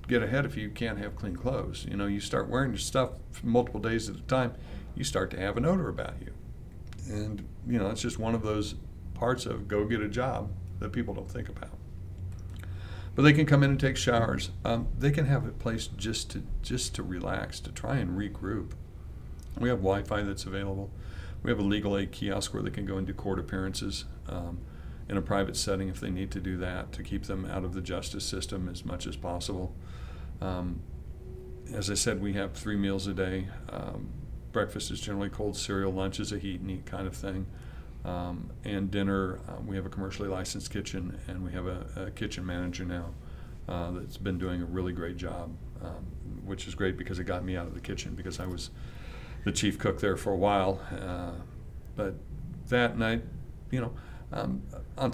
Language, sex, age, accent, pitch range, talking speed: English, male, 60-79, American, 90-105 Hz, 210 wpm